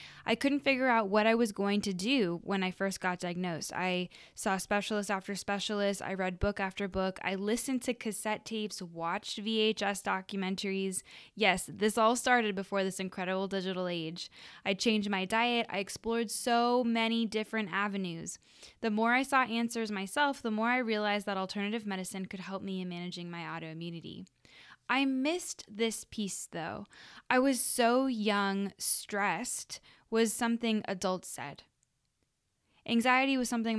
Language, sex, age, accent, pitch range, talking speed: English, female, 10-29, American, 190-230 Hz, 160 wpm